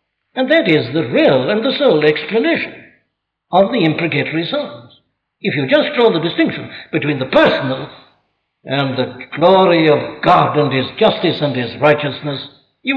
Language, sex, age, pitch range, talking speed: English, male, 60-79, 150-230 Hz, 155 wpm